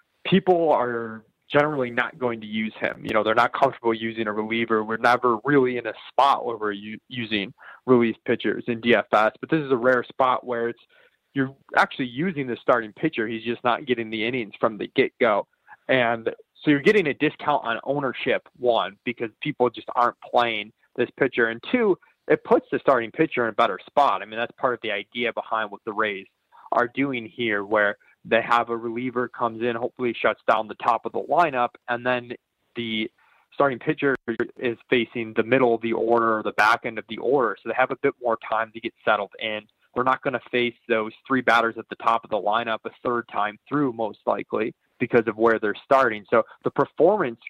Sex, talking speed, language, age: male, 210 wpm, English, 20-39